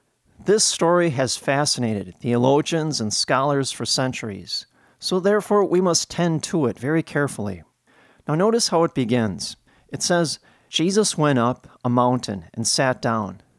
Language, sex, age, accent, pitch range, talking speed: English, male, 40-59, American, 120-160 Hz, 145 wpm